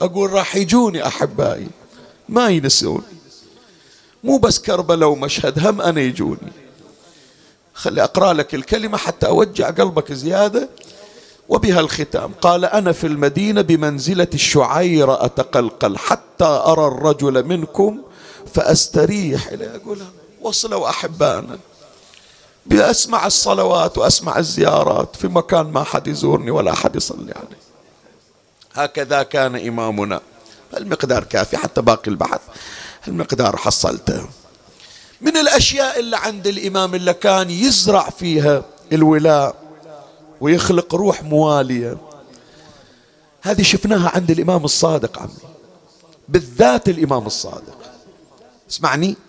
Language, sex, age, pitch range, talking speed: Arabic, male, 50-69, 145-195 Hz, 105 wpm